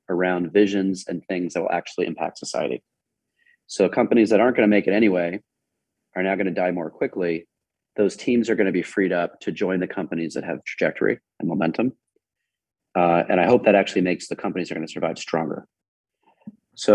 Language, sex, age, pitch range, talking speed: English, male, 30-49, 90-110 Hz, 190 wpm